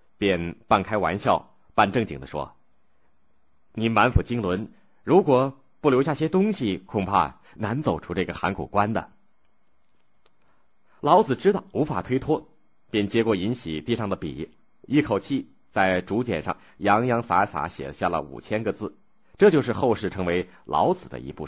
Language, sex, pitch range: Chinese, male, 85-120 Hz